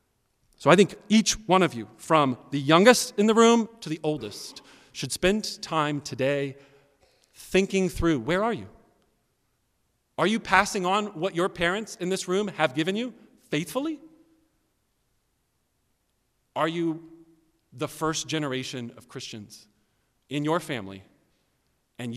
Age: 40-59